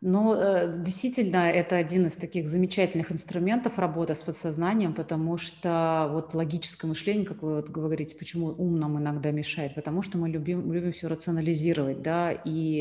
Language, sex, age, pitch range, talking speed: Russian, female, 30-49, 160-185 Hz, 155 wpm